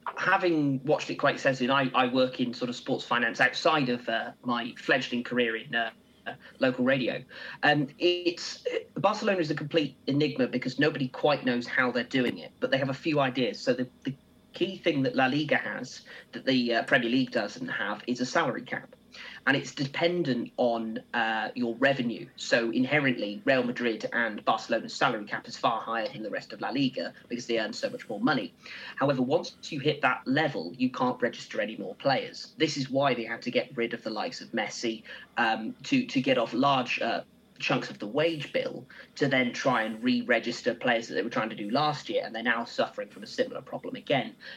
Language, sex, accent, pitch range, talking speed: English, male, British, 125-165 Hz, 210 wpm